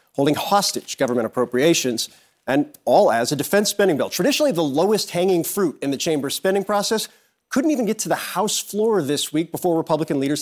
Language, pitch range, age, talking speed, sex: English, 150-185 Hz, 40-59, 190 wpm, male